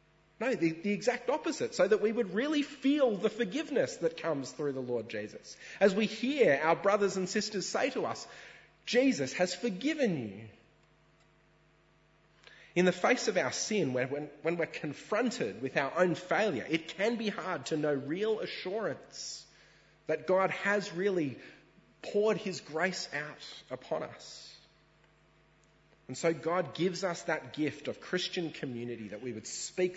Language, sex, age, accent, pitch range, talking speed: English, male, 30-49, Australian, 120-185 Hz, 160 wpm